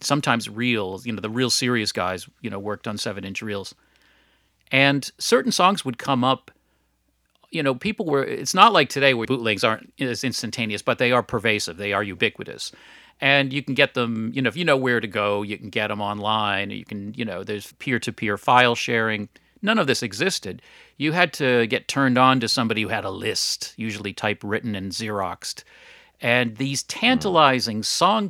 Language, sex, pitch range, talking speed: English, male, 105-140 Hz, 195 wpm